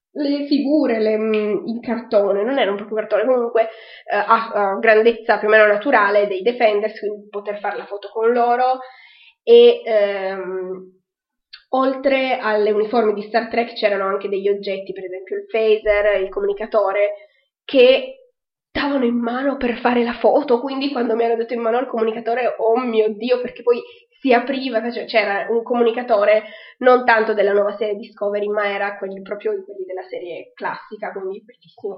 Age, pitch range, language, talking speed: 20-39, 205-245 Hz, Italian, 170 wpm